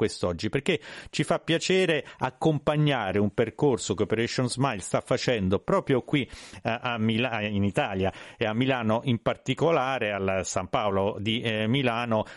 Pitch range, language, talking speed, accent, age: 110-135 Hz, Italian, 135 wpm, native, 40-59